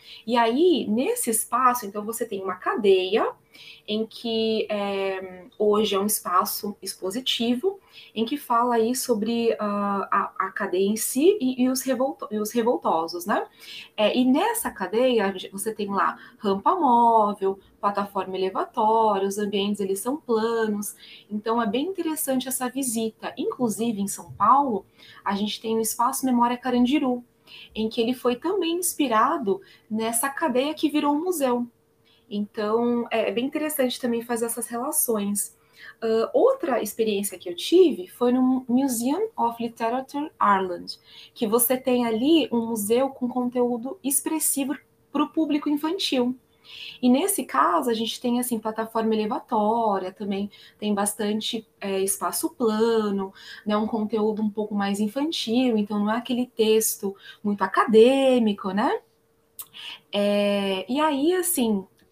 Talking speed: 135 wpm